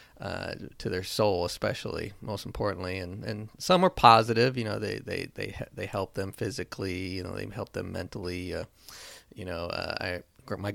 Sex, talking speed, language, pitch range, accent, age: male, 185 wpm, English, 95-115 Hz, American, 30-49